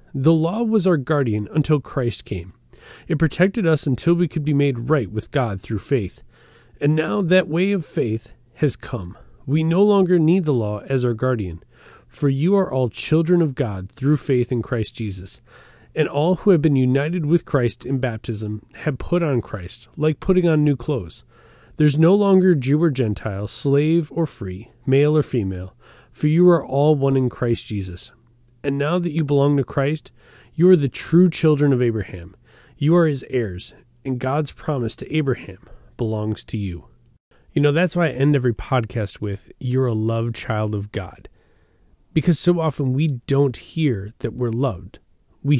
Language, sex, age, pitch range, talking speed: English, male, 30-49, 115-155 Hz, 185 wpm